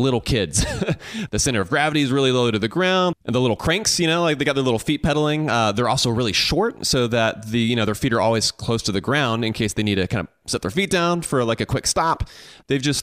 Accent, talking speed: American, 280 wpm